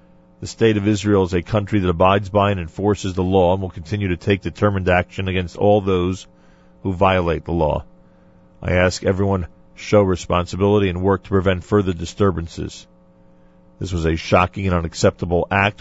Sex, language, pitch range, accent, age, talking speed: male, English, 85-100 Hz, American, 40-59, 175 wpm